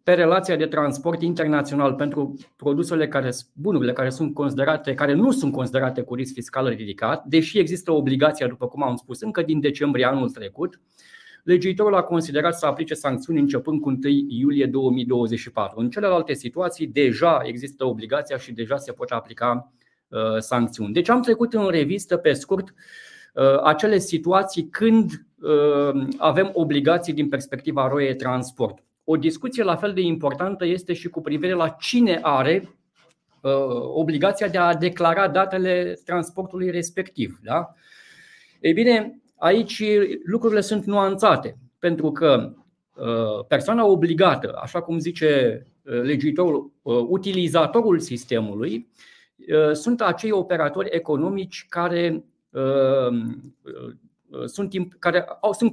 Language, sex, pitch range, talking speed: Romanian, male, 140-190 Hz, 125 wpm